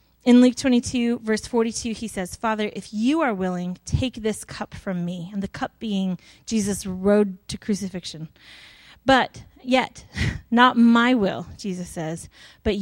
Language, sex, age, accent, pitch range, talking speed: English, female, 30-49, American, 195-255 Hz, 155 wpm